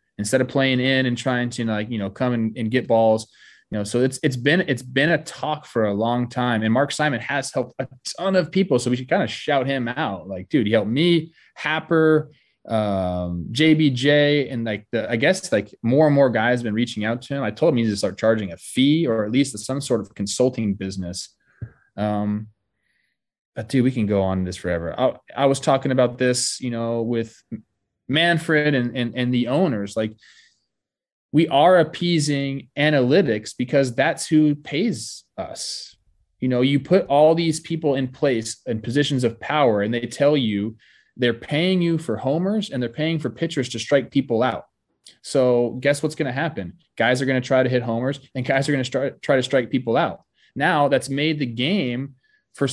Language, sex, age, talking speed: English, male, 20-39, 210 wpm